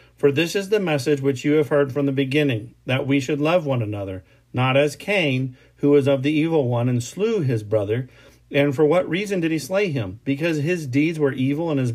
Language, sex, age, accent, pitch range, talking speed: English, male, 40-59, American, 125-155 Hz, 230 wpm